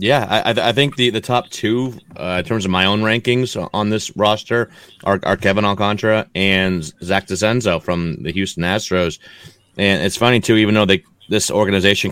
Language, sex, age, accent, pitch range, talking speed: English, male, 30-49, American, 95-110 Hz, 190 wpm